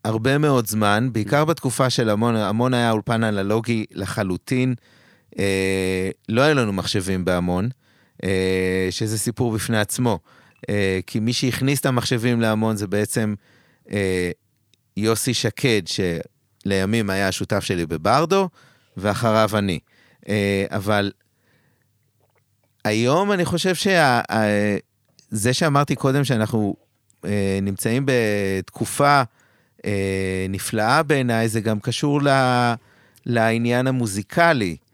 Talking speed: 110 wpm